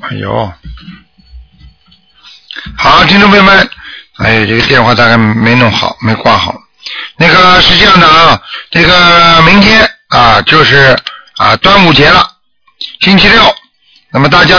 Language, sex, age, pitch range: Chinese, male, 60-79, 160-205 Hz